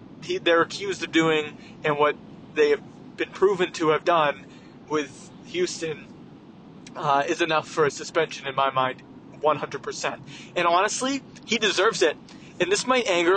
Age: 30-49